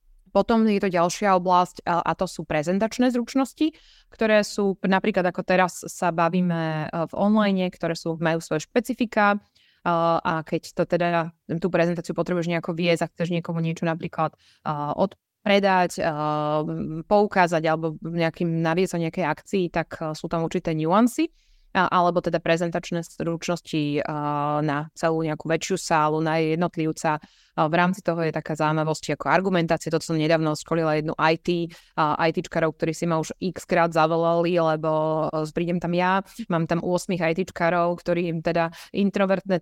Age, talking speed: 20-39, 145 wpm